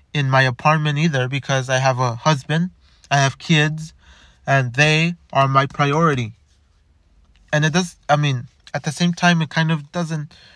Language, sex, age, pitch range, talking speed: English, male, 20-39, 135-165 Hz, 170 wpm